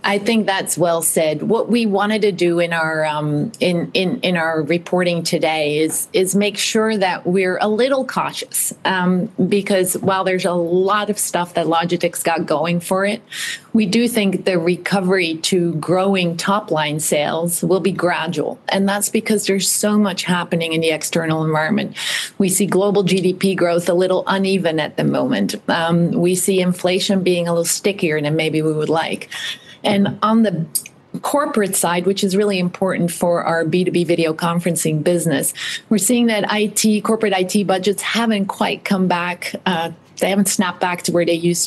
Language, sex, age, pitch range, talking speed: English, female, 30-49, 170-205 Hz, 180 wpm